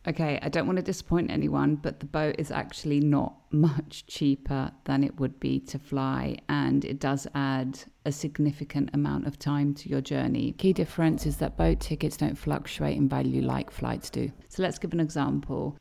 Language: Greek